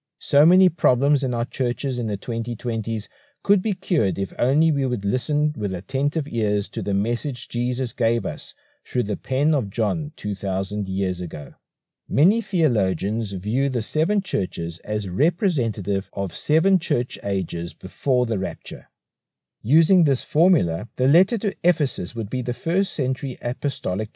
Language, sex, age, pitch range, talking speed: English, male, 50-69, 100-150 Hz, 155 wpm